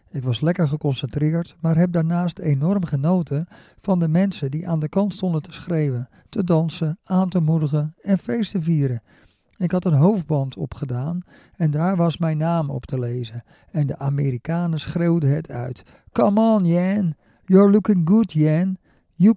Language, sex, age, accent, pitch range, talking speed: Dutch, male, 50-69, Dutch, 140-175 Hz, 165 wpm